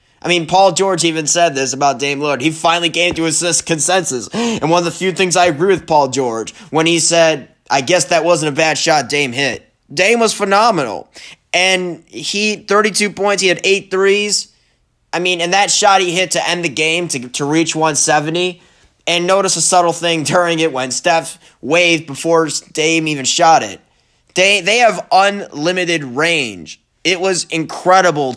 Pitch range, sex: 150-190 Hz, male